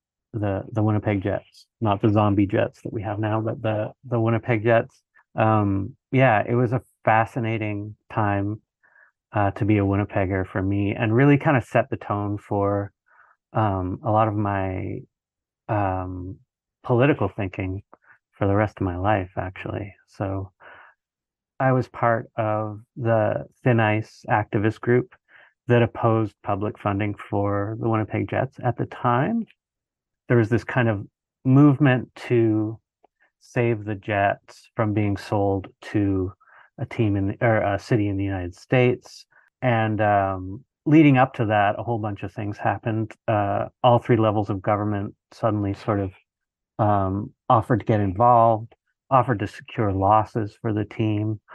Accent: American